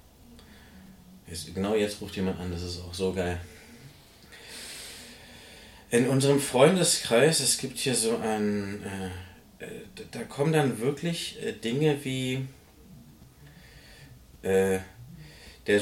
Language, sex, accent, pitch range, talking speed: German, male, German, 110-155 Hz, 100 wpm